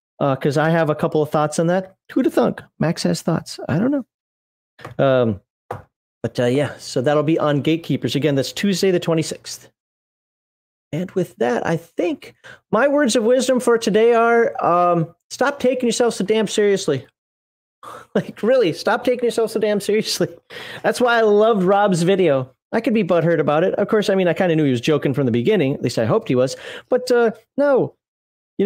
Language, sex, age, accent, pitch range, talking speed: English, male, 30-49, American, 155-220 Hz, 200 wpm